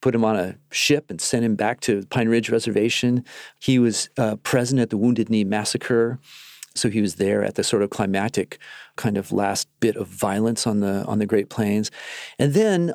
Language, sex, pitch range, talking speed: English, male, 105-130 Hz, 210 wpm